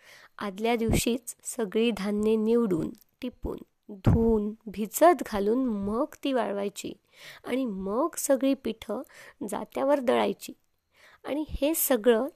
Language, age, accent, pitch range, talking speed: Marathi, 20-39, native, 220-285 Hz, 100 wpm